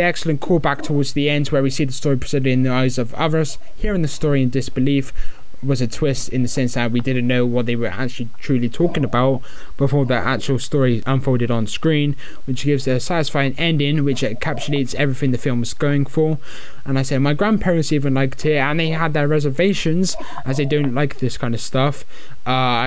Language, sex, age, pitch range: English, male, 10-29, 125-150 Hz